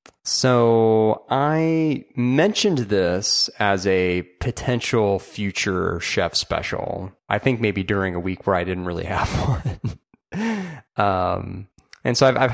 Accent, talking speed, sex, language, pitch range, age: American, 130 wpm, male, English, 90-130 Hz, 30-49